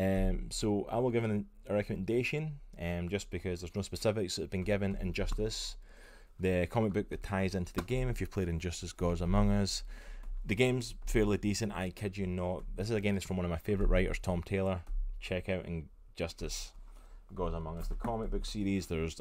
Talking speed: 205 wpm